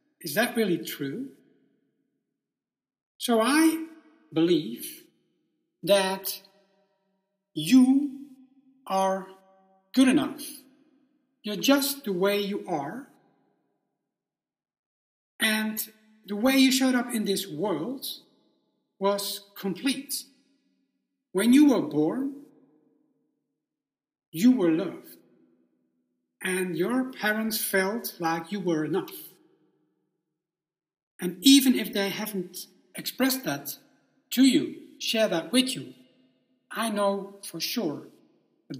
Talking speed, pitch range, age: 95 wpm, 190-275 Hz, 60-79